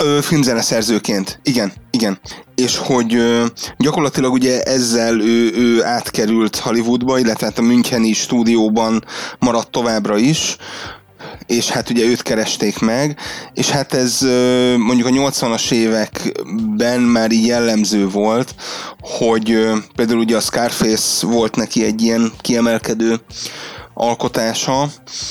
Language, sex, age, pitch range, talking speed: Hungarian, male, 30-49, 110-130 Hz, 120 wpm